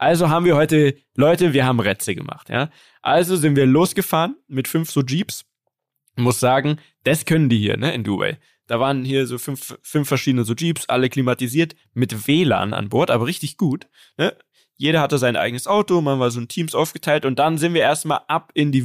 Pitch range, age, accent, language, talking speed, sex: 130-165 Hz, 20-39, German, German, 210 wpm, male